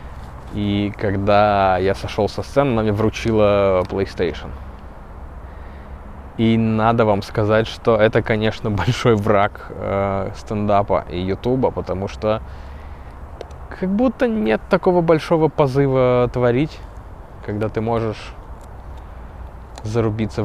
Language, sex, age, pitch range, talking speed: Russian, male, 20-39, 95-115 Hz, 105 wpm